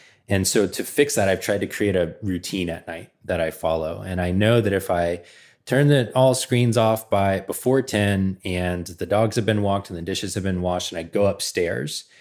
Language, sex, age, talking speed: English, male, 20-39, 220 wpm